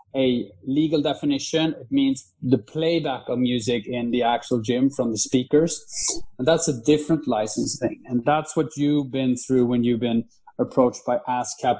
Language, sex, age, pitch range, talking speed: English, male, 30-49, 120-150 Hz, 175 wpm